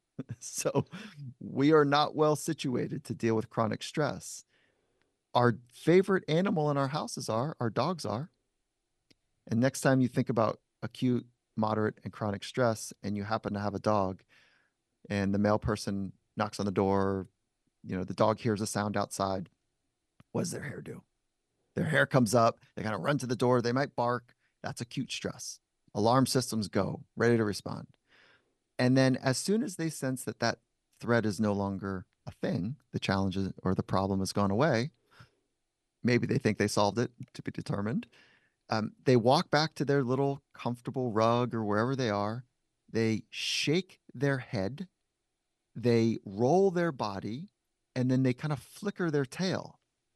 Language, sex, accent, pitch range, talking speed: English, male, American, 105-135 Hz, 170 wpm